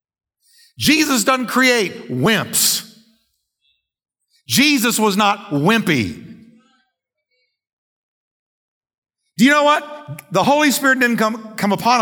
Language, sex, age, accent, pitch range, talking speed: English, male, 50-69, American, 150-225 Hz, 95 wpm